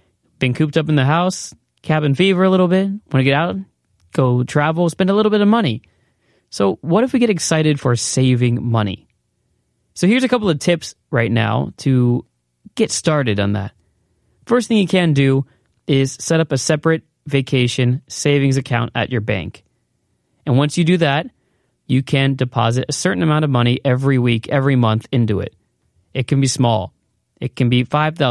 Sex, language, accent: male, Korean, American